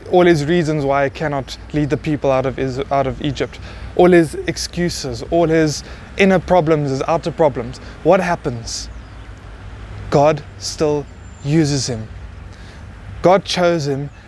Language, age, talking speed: English, 20-39, 140 wpm